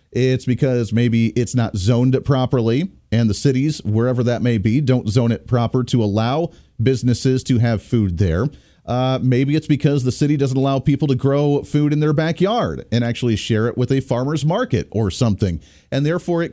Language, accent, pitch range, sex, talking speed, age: English, American, 115-165 Hz, male, 190 wpm, 40-59